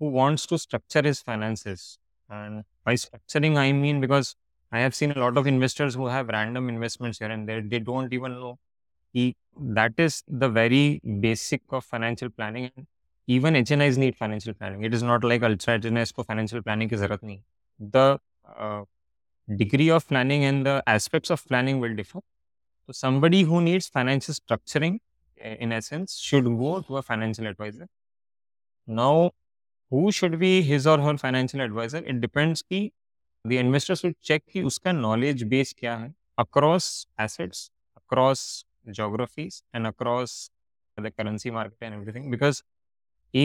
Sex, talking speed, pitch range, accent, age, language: male, 150 wpm, 110-140 Hz, Indian, 20-39, English